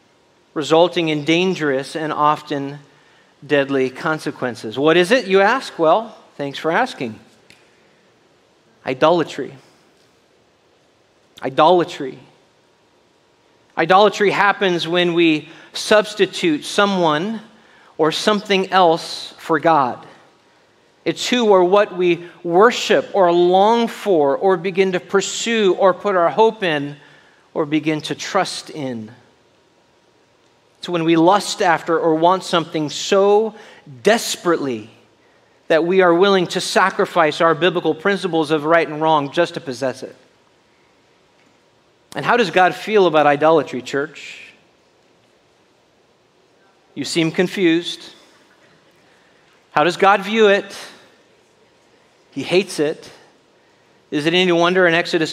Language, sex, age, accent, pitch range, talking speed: English, male, 40-59, American, 155-195 Hz, 115 wpm